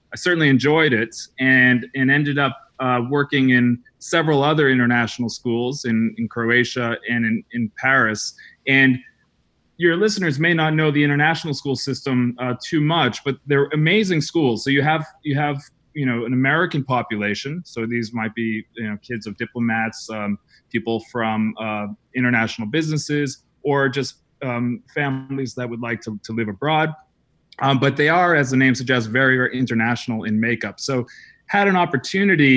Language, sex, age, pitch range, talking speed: English, male, 30-49, 120-145 Hz, 170 wpm